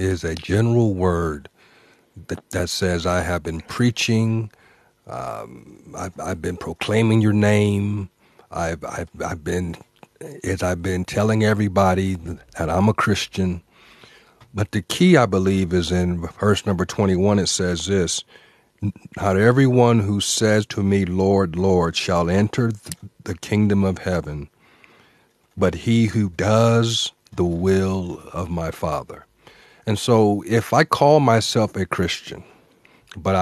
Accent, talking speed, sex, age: American, 140 wpm, male, 50-69